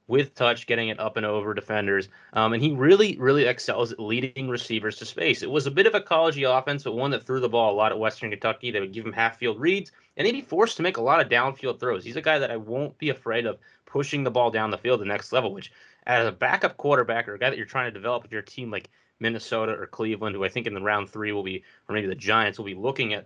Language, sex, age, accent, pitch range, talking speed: English, male, 20-39, American, 110-135 Hz, 285 wpm